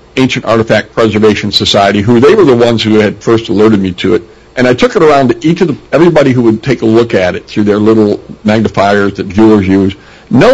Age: 50-69